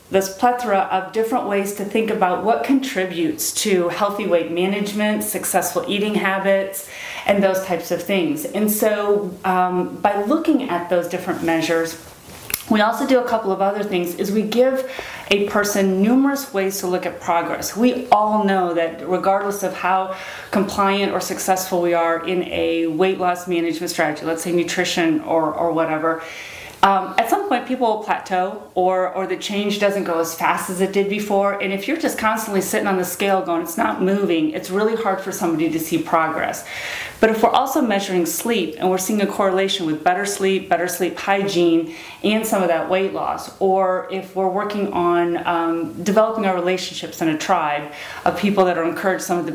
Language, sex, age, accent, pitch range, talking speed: English, female, 30-49, American, 170-205 Hz, 190 wpm